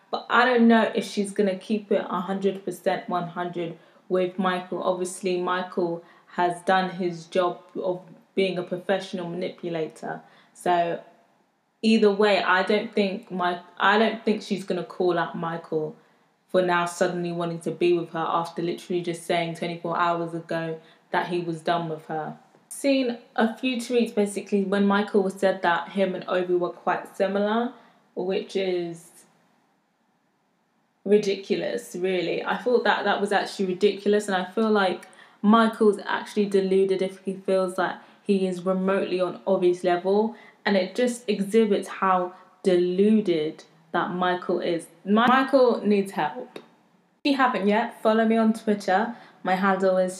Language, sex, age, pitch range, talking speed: English, female, 20-39, 180-210 Hz, 155 wpm